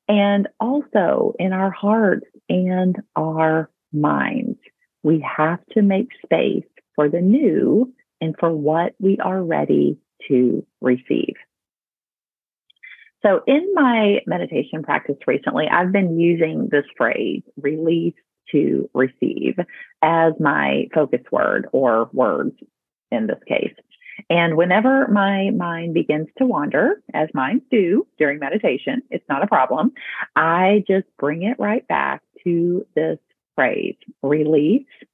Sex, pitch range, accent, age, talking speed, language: female, 165-220 Hz, American, 40-59, 125 wpm, English